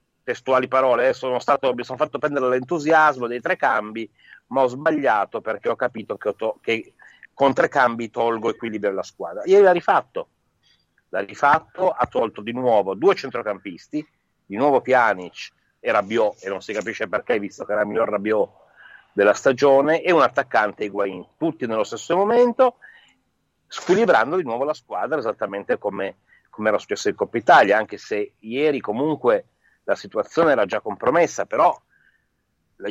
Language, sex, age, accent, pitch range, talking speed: Italian, male, 40-59, native, 115-170 Hz, 165 wpm